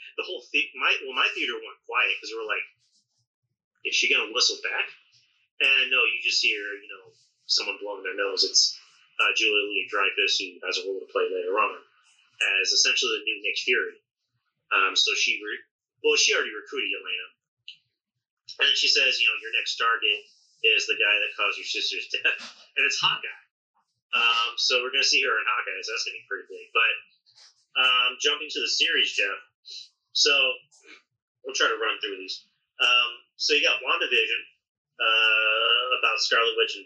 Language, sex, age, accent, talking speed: English, male, 30-49, American, 190 wpm